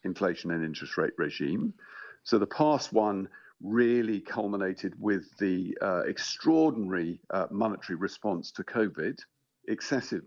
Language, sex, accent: English, male, British